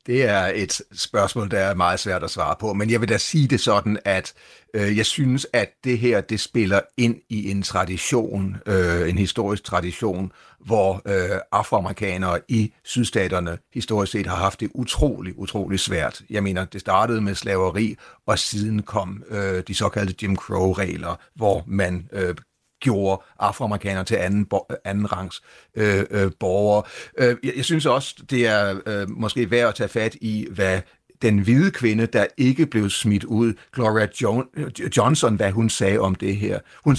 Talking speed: 165 wpm